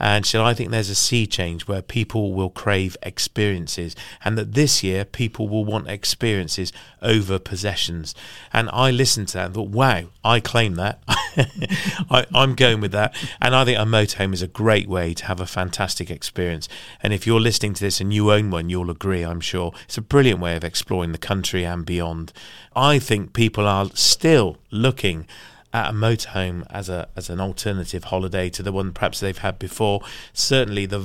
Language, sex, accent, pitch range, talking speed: English, male, British, 90-115 Hz, 195 wpm